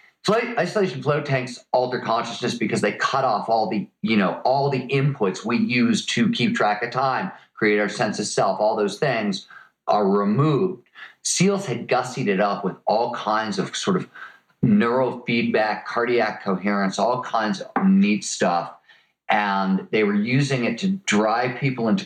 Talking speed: 170 wpm